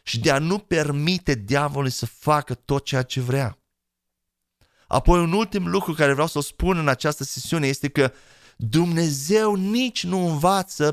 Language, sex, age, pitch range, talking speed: Romanian, male, 30-49, 135-180 Hz, 165 wpm